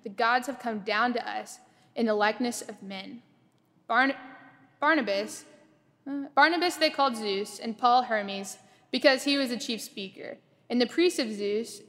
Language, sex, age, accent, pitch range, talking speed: English, female, 20-39, American, 210-265 Hz, 155 wpm